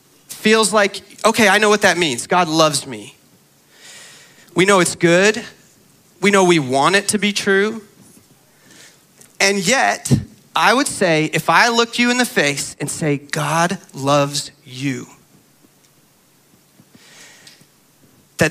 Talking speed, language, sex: 135 wpm, English, male